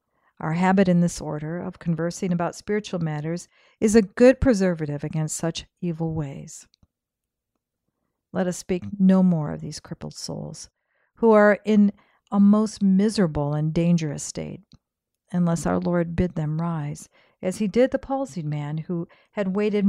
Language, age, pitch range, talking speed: English, 50-69, 165-215 Hz, 155 wpm